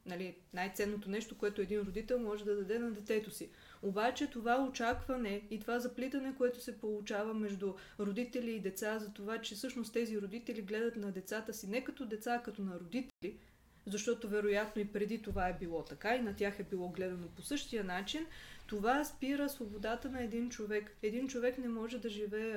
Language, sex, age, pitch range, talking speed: Bulgarian, female, 20-39, 205-240 Hz, 185 wpm